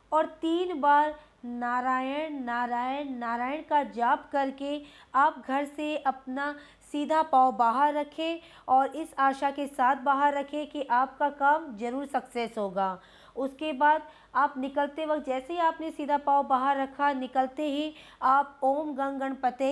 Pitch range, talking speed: 260-310 Hz, 145 wpm